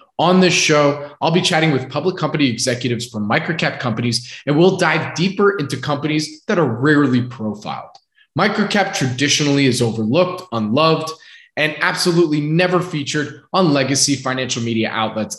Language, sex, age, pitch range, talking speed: English, male, 20-39, 125-160 Hz, 145 wpm